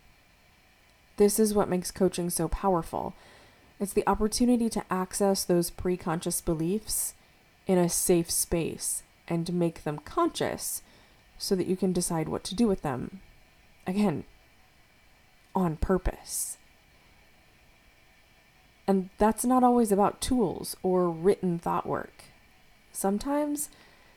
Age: 20-39